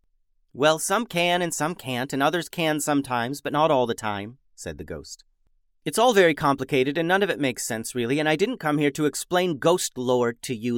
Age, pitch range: 30-49, 105-155 Hz